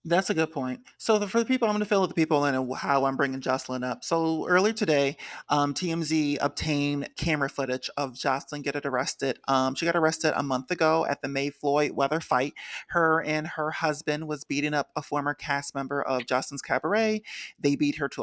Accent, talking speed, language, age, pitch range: American, 215 wpm, English, 30-49, 140-190 Hz